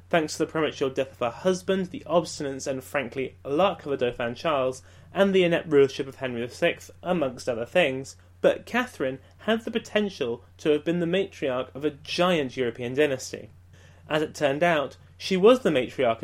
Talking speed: 185 wpm